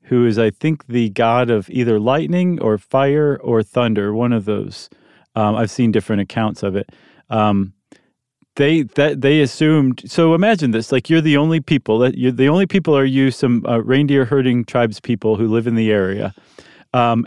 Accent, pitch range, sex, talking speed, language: American, 115-145 Hz, male, 190 wpm, English